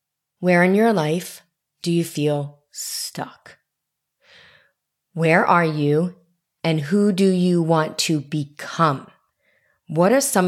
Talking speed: 120 wpm